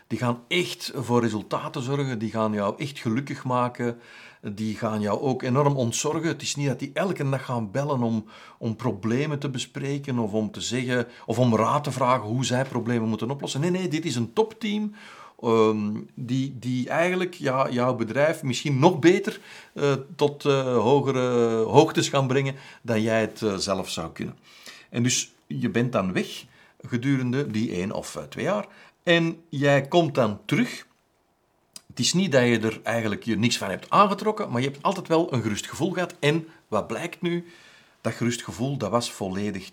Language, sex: Dutch, male